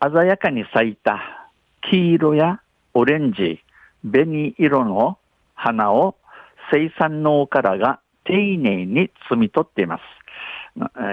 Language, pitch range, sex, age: Japanese, 115-150 Hz, male, 60-79